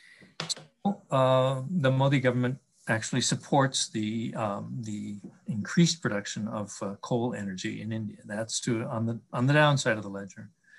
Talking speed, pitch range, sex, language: 140 wpm, 110-135 Hz, male, English